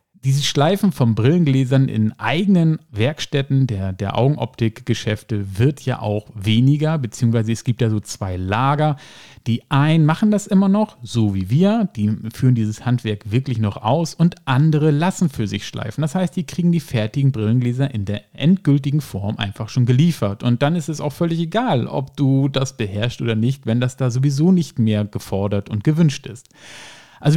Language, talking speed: German, 180 wpm